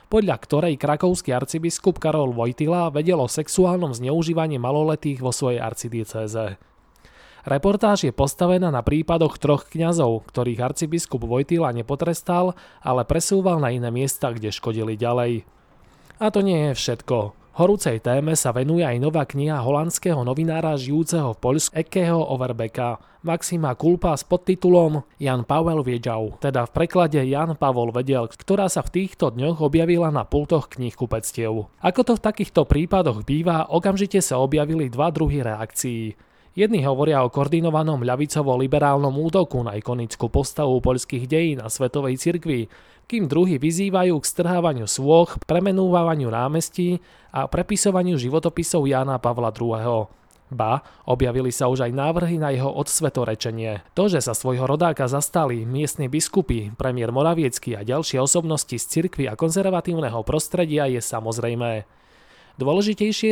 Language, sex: Slovak, male